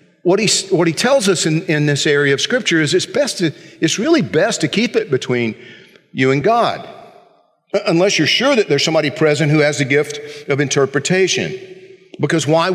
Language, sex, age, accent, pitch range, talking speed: English, male, 50-69, American, 150-205 Hz, 180 wpm